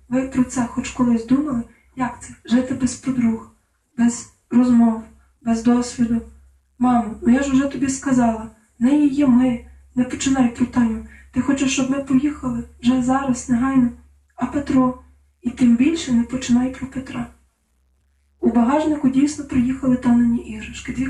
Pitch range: 235-265 Hz